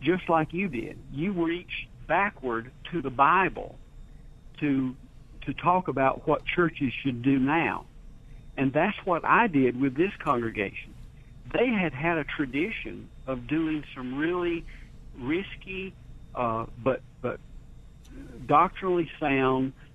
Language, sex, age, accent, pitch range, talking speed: English, male, 60-79, American, 130-165 Hz, 125 wpm